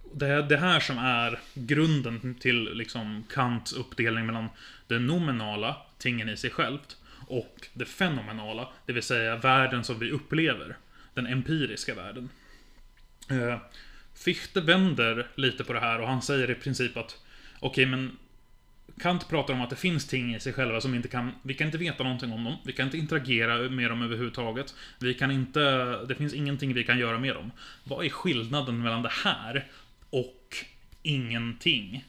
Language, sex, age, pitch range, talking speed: Swedish, male, 20-39, 120-140 Hz, 170 wpm